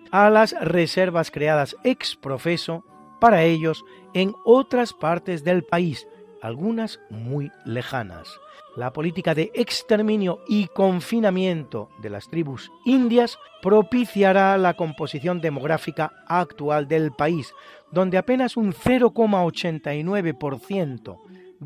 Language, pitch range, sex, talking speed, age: Spanish, 155-215 Hz, male, 105 wpm, 40-59